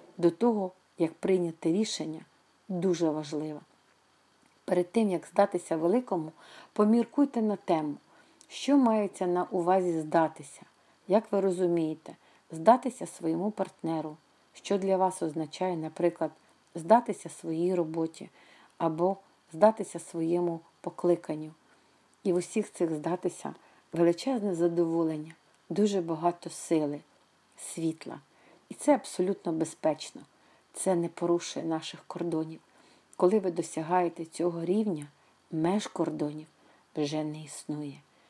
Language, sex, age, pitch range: Ukrainian, female, 50-69, 160-190 Hz